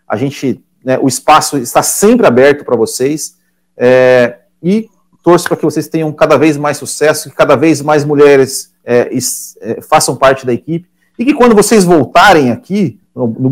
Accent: Brazilian